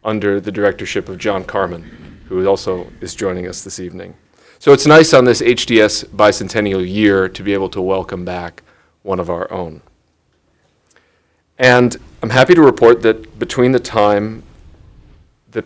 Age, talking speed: 40-59, 155 wpm